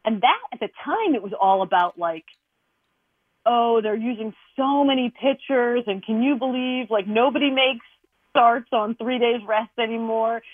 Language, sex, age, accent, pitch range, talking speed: English, female, 40-59, American, 180-235 Hz, 165 wpm